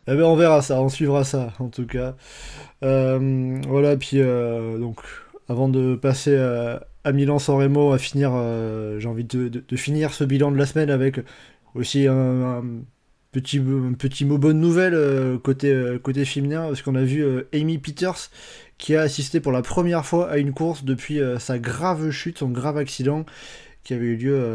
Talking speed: 185 wpm